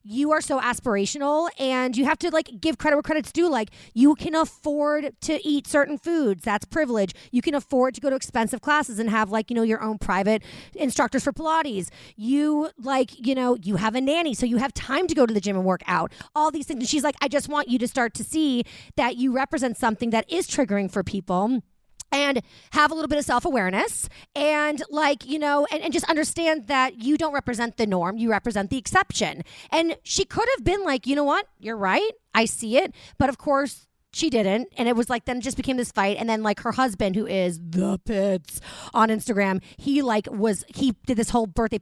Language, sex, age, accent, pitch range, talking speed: English, female, 30-49, American, 220-295 Hz, 230 wpm